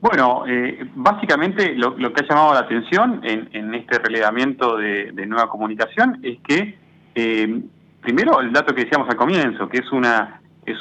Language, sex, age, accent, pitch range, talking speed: Italian, male, 30-49, Argentinian, 115-165 Hz, 180 wpm